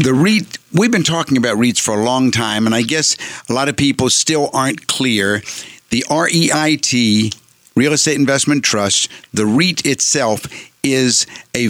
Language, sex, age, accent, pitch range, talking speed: English, male, 60-79, American, 110-145 Hz, 165 wpm